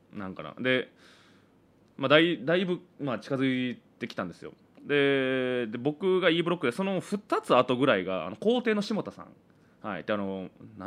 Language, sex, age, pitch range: Japanese, male, 20-39, 120-190 Hz